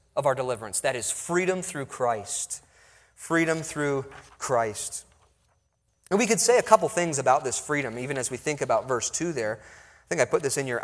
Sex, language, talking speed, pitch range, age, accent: male, English, 200 wpm, 140-190 Hz, 30-49, American